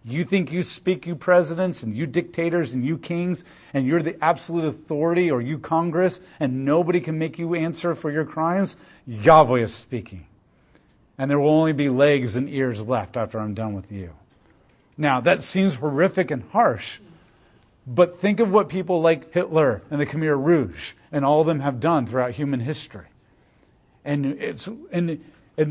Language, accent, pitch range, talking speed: English, American, 125-175 Hz, 175 wpm